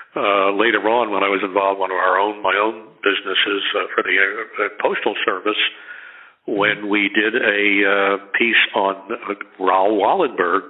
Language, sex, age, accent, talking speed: English, male, 60-79, American, 175 wpm